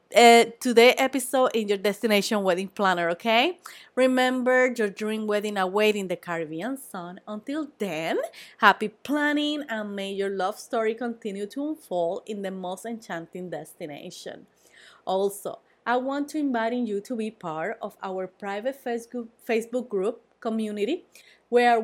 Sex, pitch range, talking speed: female, 195-255 Hz, 140 wpm